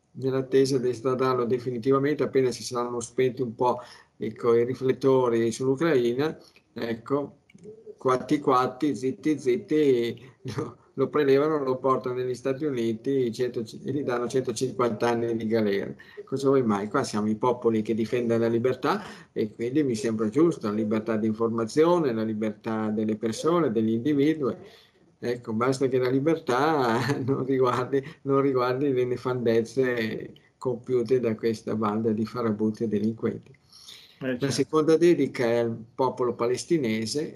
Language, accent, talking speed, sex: Italian, native, 140 wpm, male